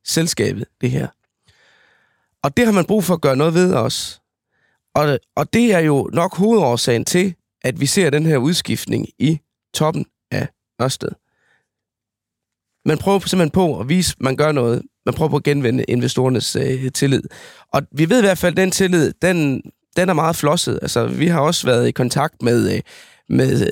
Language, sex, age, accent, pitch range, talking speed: Danish, male, 20-39, native, 125-175 Hz, 180 wpm